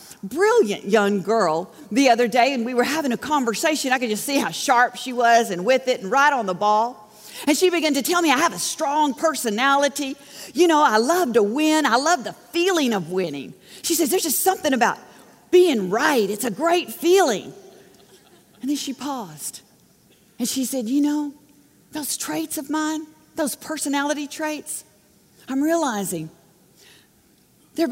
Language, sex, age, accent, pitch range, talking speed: English, female, 40-59, American, 215-305 Hz, 175 wpm